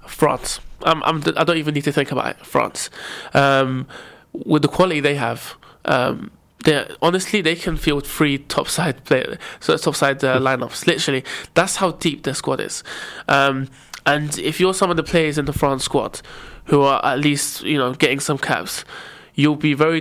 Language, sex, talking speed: English, male, 200 wpm